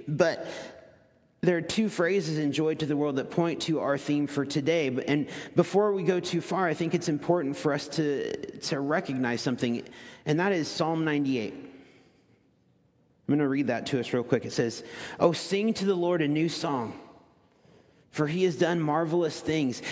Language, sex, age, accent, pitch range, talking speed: English, male, 40-59, American, 145-180 Hz, 190 wpm